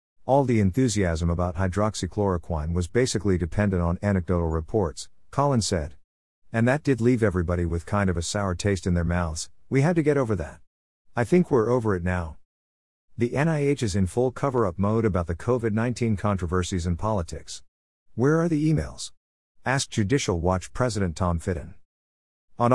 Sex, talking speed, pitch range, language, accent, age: male, 165 wpm, 90-115 Hz, English, American, 50-69